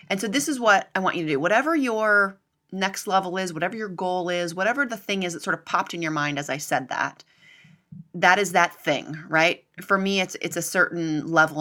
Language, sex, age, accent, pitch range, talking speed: English, female, 30-49, American, 160-200 Hz, 240 wpm